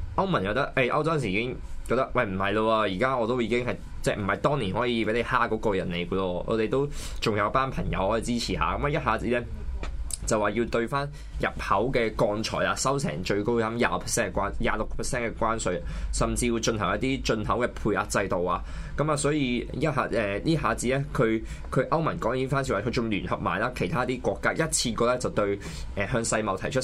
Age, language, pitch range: 20-39, Chinese, 95-125 Hz